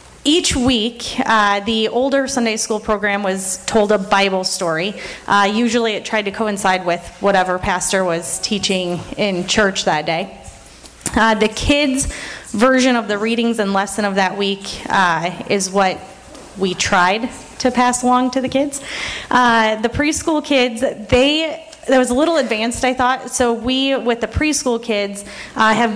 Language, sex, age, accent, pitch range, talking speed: English, female, 30-49, American, 200-260 Hz, 165 wpm